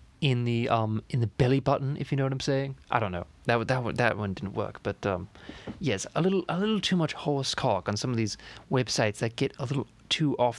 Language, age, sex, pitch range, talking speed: English, 20-39, male, 110-140 Hz, 260 wpm